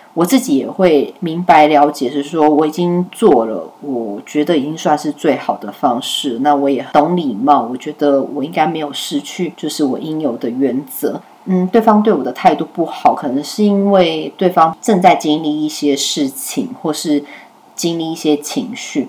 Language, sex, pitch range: Chinese, female, 150-210 Hz